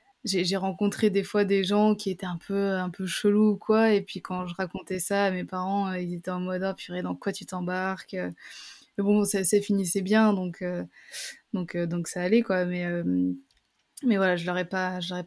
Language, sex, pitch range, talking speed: French, female, 180-205 Hz, 225 wpm